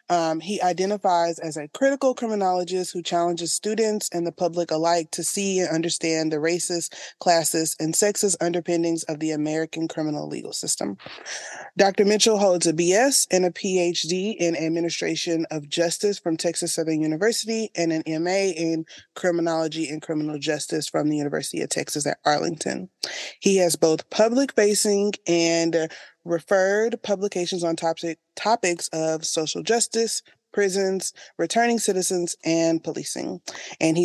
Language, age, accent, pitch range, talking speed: English, 20-39, American, 160-195 Hz, 145 wpm